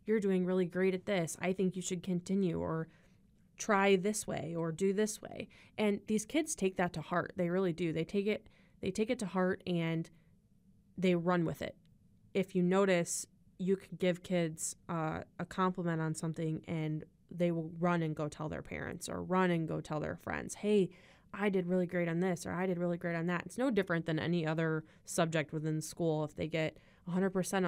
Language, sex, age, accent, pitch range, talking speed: English, female, 20-39, American, 165-195 Hz, 215 wpm